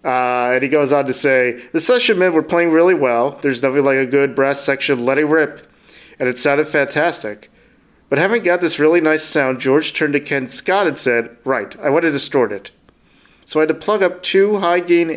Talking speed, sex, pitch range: 220 wpm, male, 130-160 Hz